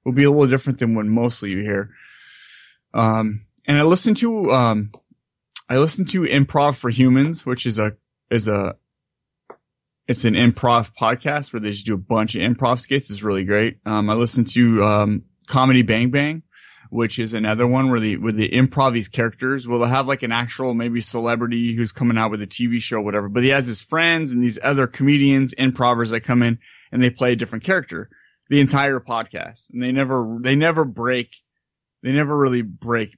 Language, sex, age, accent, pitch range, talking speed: English, male, 20-39, American, 115-145 Hz, 200 wpm